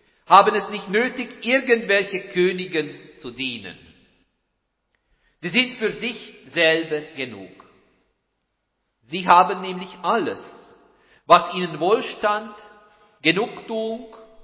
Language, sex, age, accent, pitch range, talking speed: German, male, 50-69, German, 140-215 Hz, 90 wpm